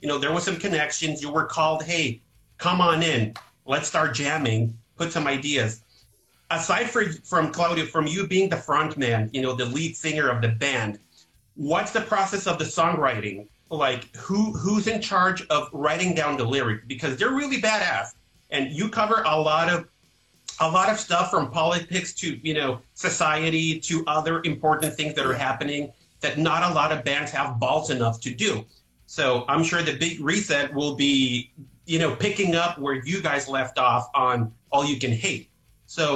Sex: male